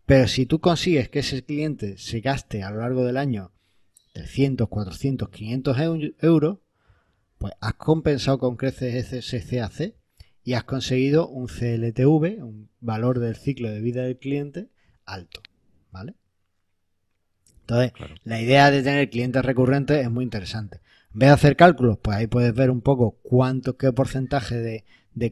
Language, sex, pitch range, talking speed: Spanish, male, 110-140 Hz, 155 wpm